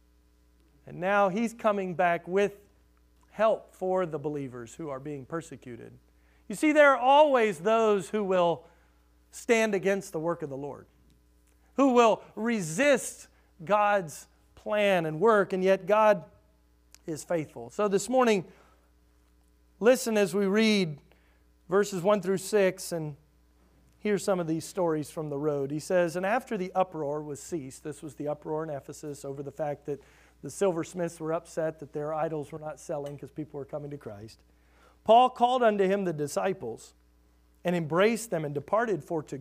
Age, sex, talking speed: 40-59, male, 165 wpm